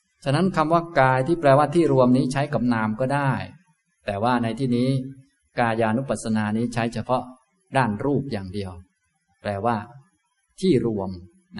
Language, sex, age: Thai, male, 20-39